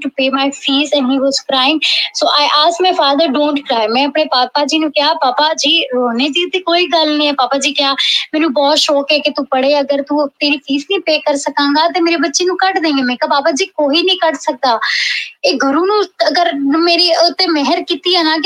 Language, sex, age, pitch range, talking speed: Punjabi, female, 20-39, 275-325 Hz, 170 wpm